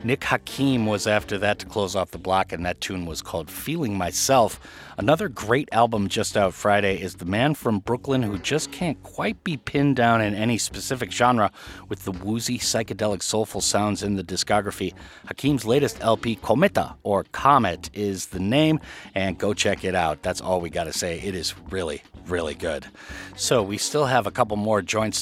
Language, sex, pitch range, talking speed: English, male, 95-120 Hz, 190 wpm